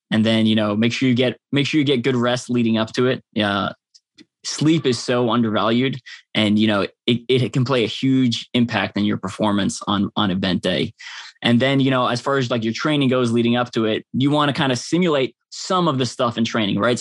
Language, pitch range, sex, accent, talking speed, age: English, 110-130 Hz, male, American, 240 wpm, 20-39